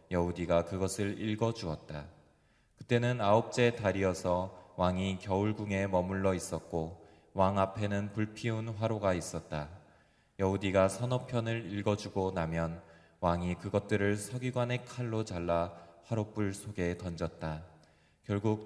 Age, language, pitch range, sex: 20-39, Korean, 90-110 Hz, male